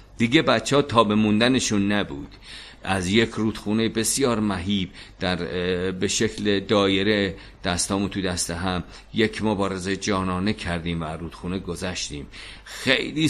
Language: Persian